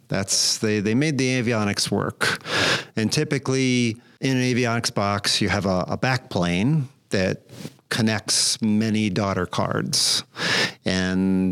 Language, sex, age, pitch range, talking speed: English, male, 50-69, 100-115 Hz, 125 wpm